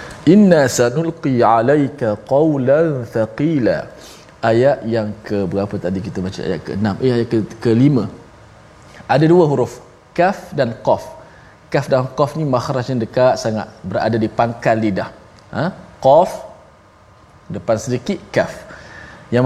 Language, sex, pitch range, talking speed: Malayalam, male, 115-160 Hz, 125 wpm